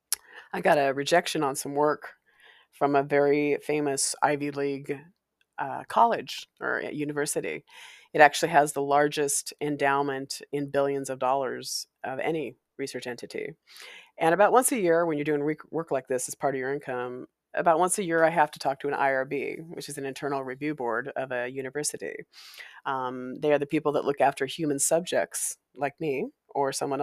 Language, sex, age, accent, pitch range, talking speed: English, female, 30-49, American, 135-155 Hz, 180 wpm